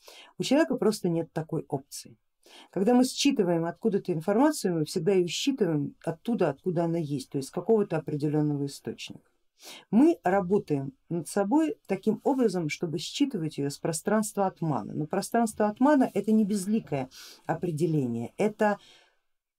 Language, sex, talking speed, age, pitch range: Russian, female, 140 wpm, 50-69, 155-220 Hz